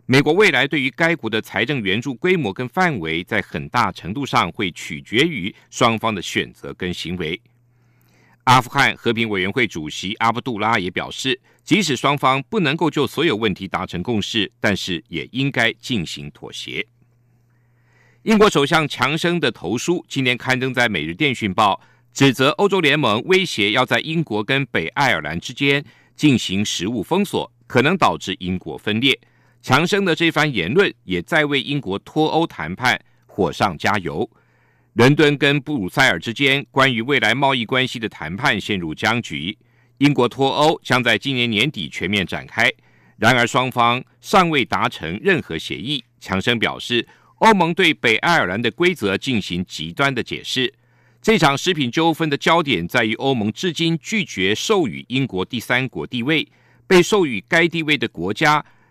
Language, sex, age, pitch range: German, male, 50-69, 115-150 Hz